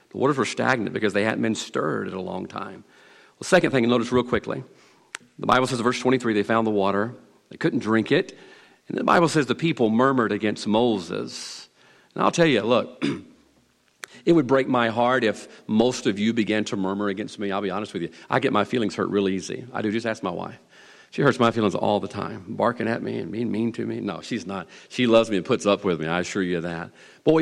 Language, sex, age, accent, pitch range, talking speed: English, male, 40-59, American, 105-155 Hz, 245 wpm